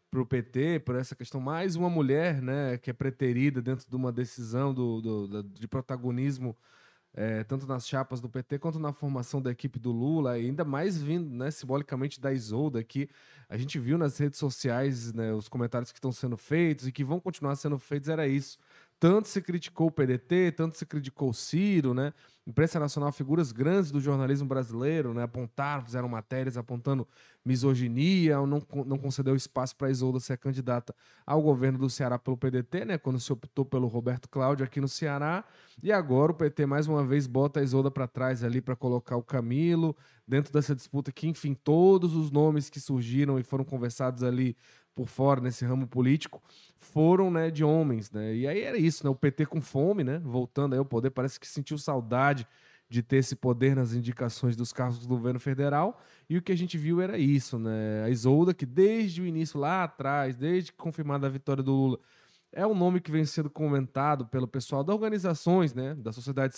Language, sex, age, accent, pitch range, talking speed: Portuguese, male, 20-39, Brazilian, 125-155 Hz, 195 wpm